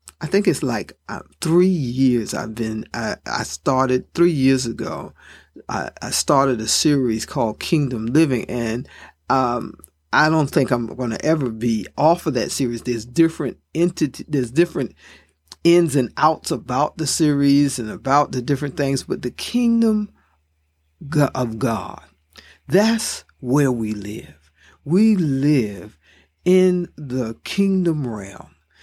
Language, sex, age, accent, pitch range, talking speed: English, male, 50-69, American, 105-165 Hz, 140 wpm